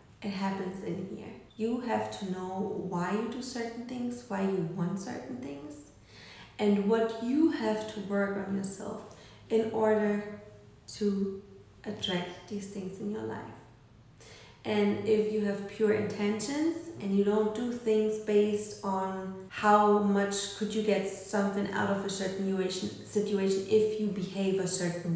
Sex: female